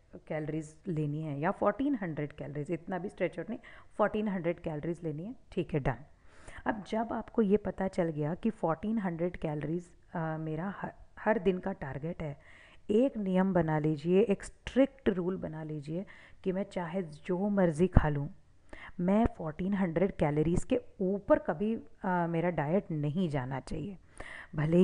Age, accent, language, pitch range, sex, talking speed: 40-59, native, Hindi, 165-205 Hz, female, 155 wpm